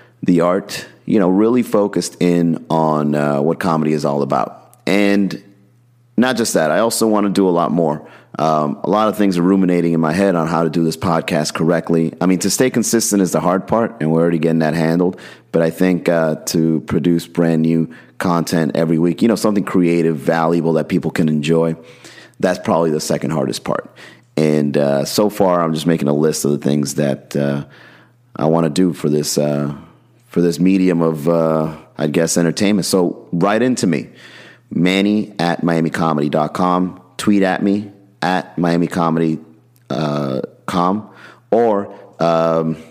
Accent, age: American, 30-49